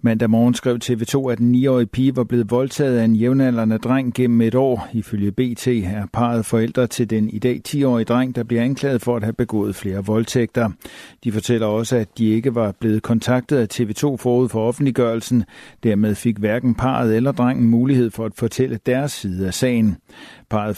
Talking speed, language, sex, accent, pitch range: 195 wpm, Danish, male, native, 110-125 Hz